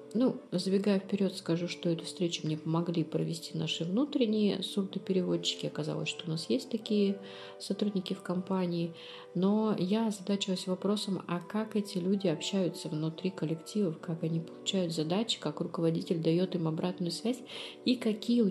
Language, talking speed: Russian, 150 wpm